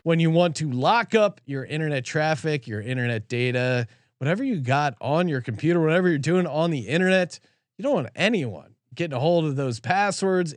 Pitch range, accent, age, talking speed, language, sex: 125-165 Hz, American, 30-49, 195 wpm, English, male